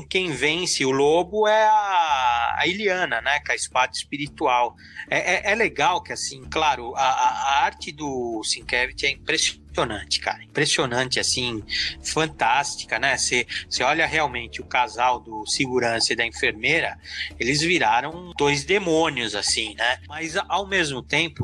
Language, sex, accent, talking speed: Portuguese, male, Brazilian, 150 wpm